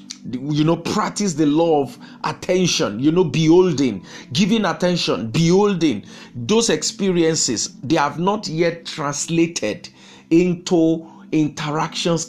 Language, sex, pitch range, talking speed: English, male, 130-180 Hz, 105 wpm